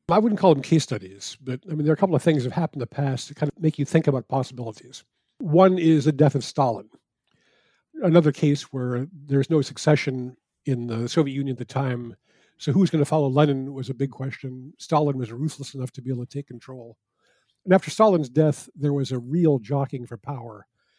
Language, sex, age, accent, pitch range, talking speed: English, male, 50-69, American, 130-155 Hz, 225 wpm